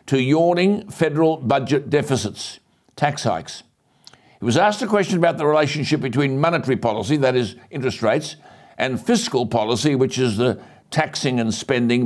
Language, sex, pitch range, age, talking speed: English, male, 135-170 Hz, 60-79, 155 wpm